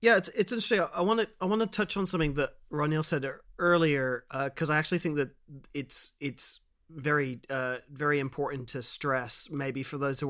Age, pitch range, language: 30-49, 135-160 Hz, English